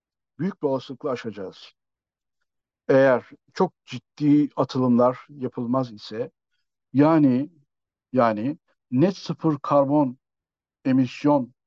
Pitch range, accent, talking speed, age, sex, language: 130-185 Hz, native, 80 wpm, 60-79, male, Turkish